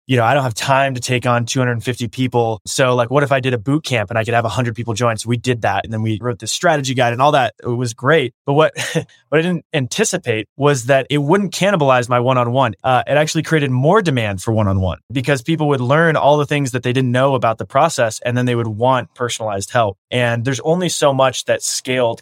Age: 20-39